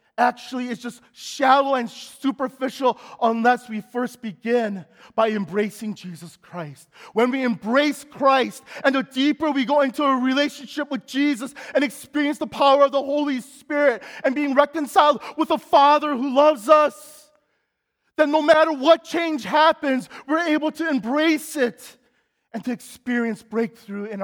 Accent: American